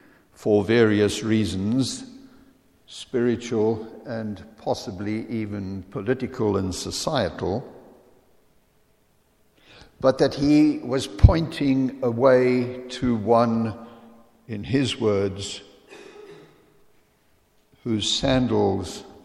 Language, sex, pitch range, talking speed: English, male, 105-135 Hz, 70 wpm